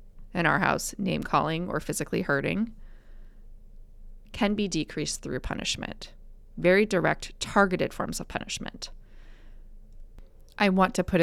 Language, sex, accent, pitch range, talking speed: English, female, American, 150-210 Hz, 125 wpm